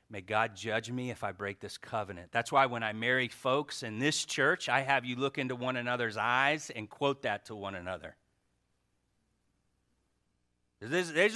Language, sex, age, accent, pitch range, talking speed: English, male, 40-59, American, 120-185 Hz, 175 wpm